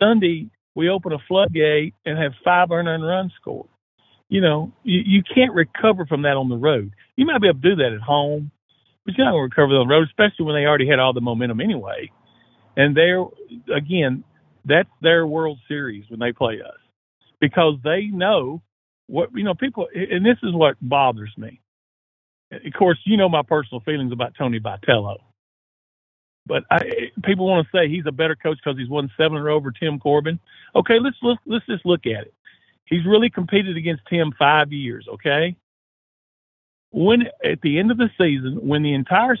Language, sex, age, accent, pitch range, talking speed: English, male, 50-69, American, 135-185 Hz, 195 wpm